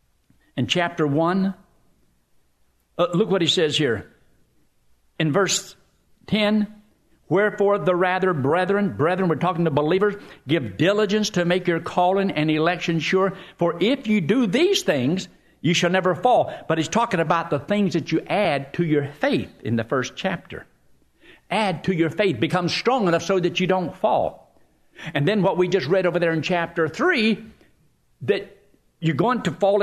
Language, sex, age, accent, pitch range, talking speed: English, male, 60-79, American, 145-195 Hz, 165 wpm